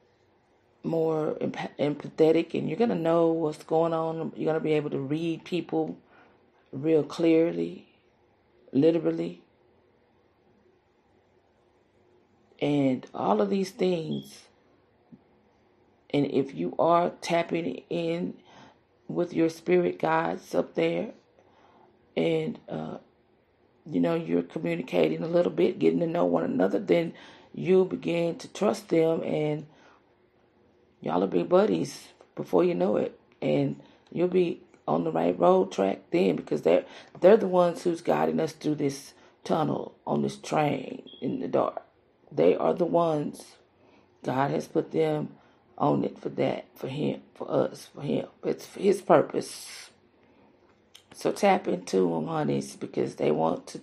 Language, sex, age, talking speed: English, female, 40-59, 140 wpm